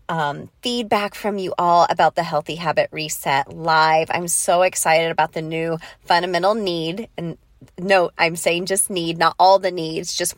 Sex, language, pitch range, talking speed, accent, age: female, English, 160-190 Hz, 175 wpm, American, 30-49